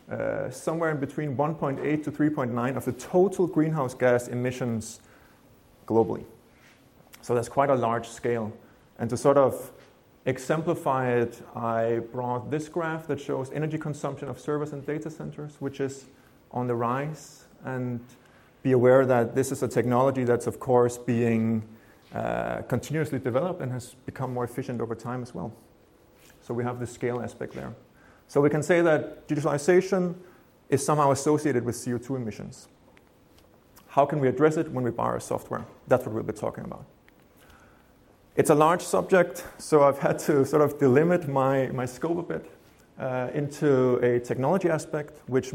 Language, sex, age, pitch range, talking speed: English, male, 30-49, 120-150 Hz, 165 wpm